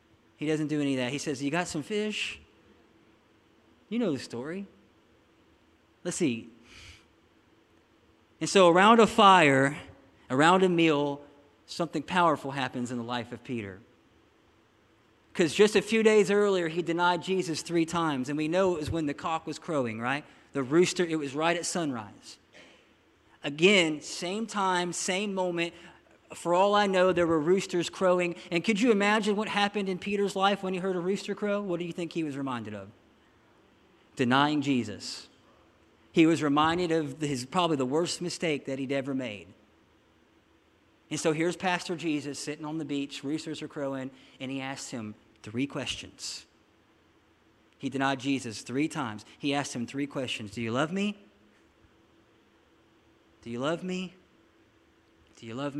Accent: American